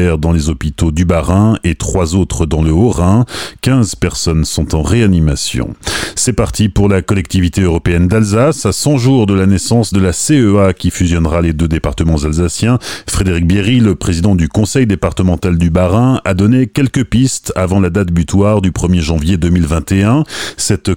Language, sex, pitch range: French, male, 85-115 Hz